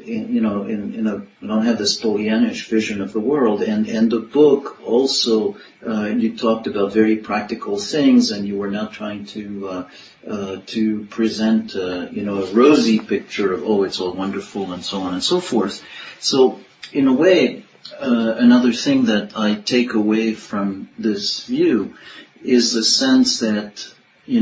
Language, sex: English, male